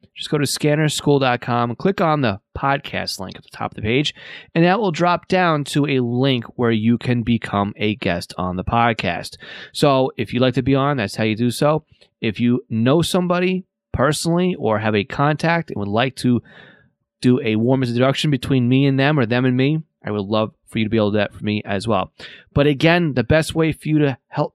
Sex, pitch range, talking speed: male, 115-155 Hz, 230 wpm